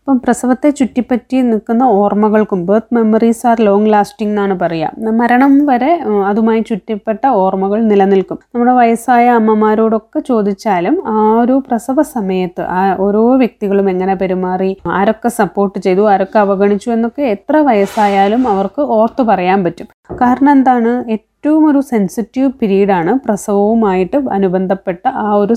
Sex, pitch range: female, 200-240 Hz